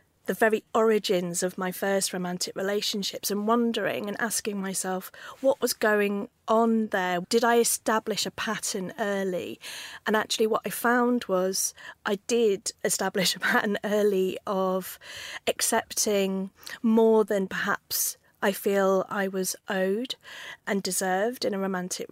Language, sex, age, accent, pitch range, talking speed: English, female, 30-49, British, 185-220 Hz, 140 wpm